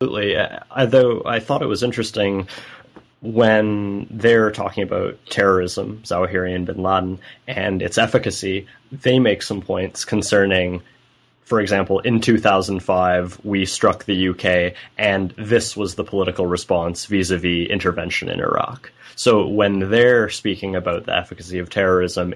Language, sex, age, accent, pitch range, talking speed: English, male, 20-39, American, 90-110 Hz, 135 wpm